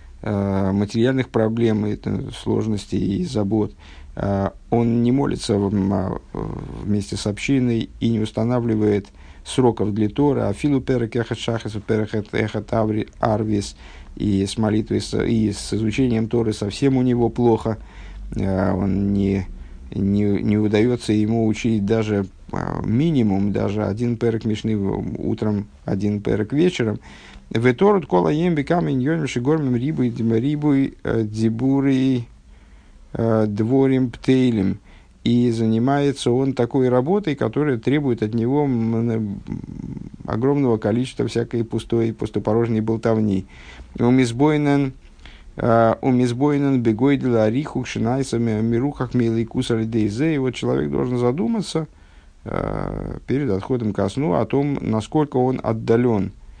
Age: 50-69